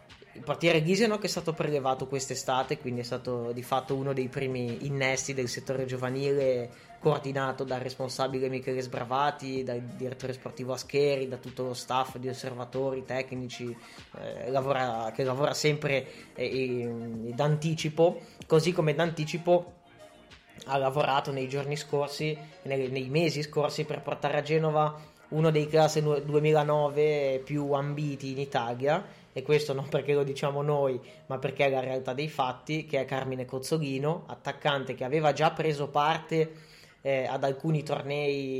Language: Italian